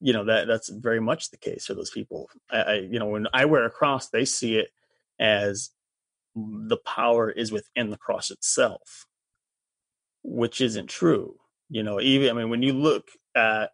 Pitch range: 110-160 Hz